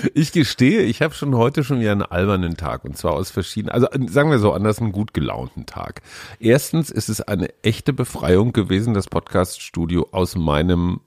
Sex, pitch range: male, 90-125 Hz